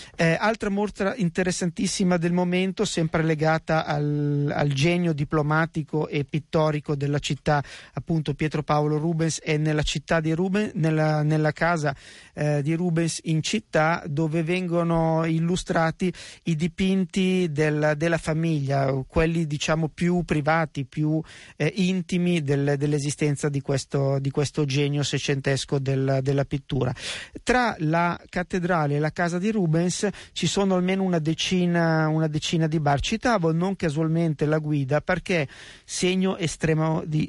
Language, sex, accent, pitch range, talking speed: Italian, male, native, 150-175 Hz, 135 wpm